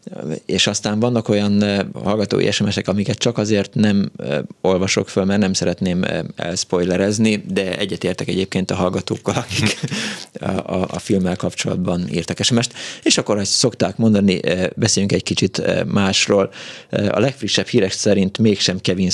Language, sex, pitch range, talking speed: Hungarian, male, 90-105 Hz, 140 wpm